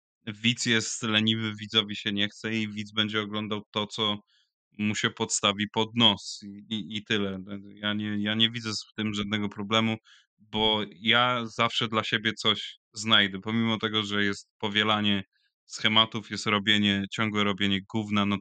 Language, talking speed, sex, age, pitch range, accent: Polish, 165 wpm, male, 20-39, 100-110 Hz, native